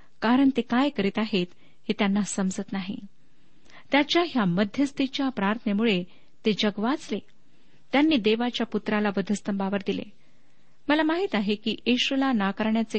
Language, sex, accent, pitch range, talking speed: Marathi, female, native, 200-245 Hz, 105 wpm